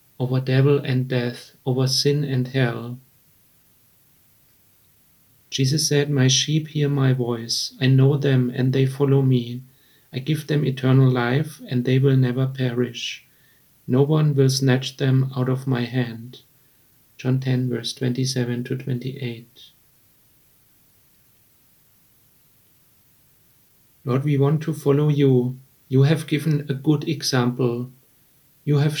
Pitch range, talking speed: 130-145 Hz, 125 wpm